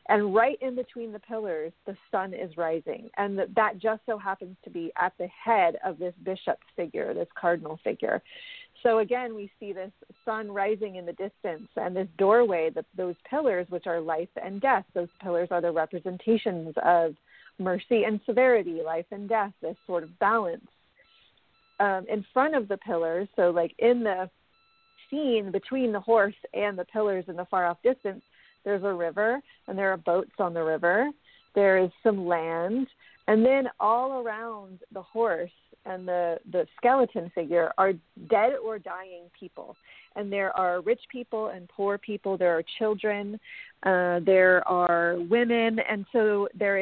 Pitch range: 180-230 Hz